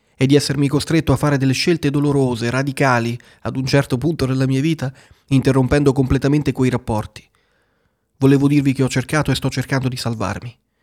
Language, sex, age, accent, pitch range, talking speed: Italian, male, 30-49, native, 120-140 Hz, 170 wpm